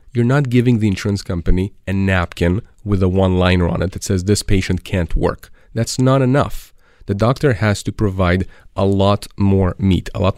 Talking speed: 190 wpm